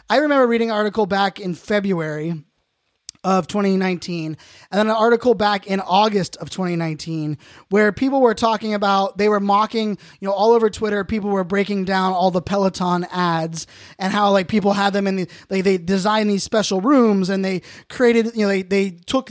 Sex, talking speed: male, 195 wpm